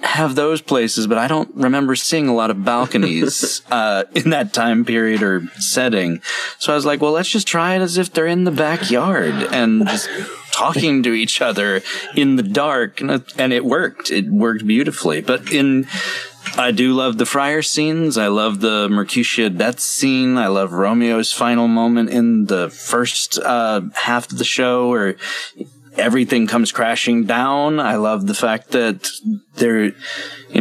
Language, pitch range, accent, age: English, 105-150 Hz, American, 30-49